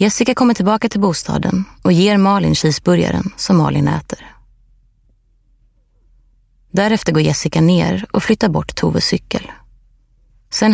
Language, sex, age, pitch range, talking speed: Swedish, female, 30-49, 120-195 Hz, 125 wpm